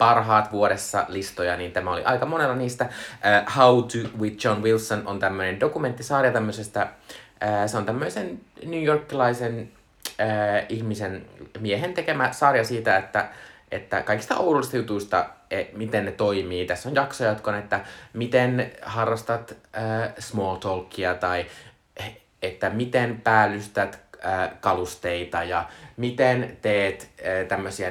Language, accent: Finnish, native